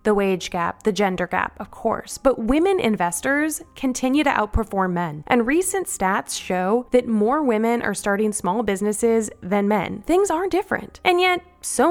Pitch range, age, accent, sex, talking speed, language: 185-255 Hz, 20-39, American, female, 170 wpm, English